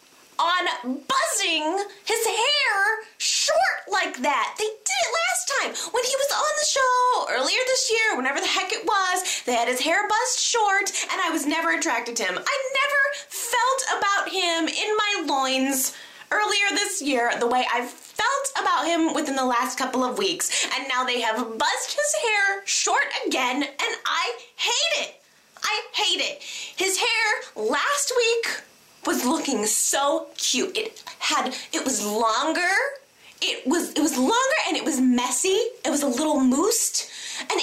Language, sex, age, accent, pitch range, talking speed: English, female, 20-39, American, 285-435 Hz, 170 wpm